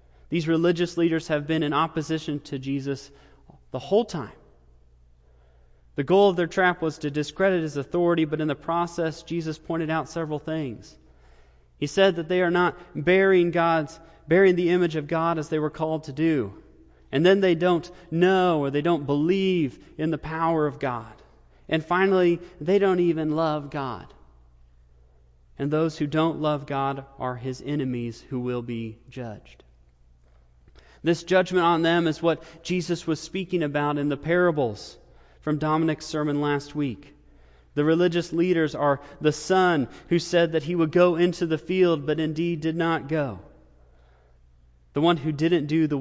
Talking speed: 165 wpm